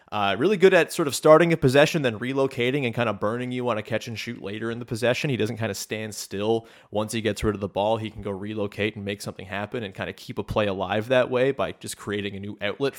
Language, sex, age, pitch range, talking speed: English, male, 30-49, 110-135 Hz, 280 wpm